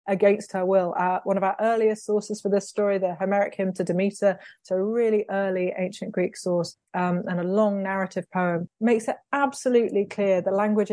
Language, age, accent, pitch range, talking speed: English, 30-49, British, 180-215 Hz, 200 wpm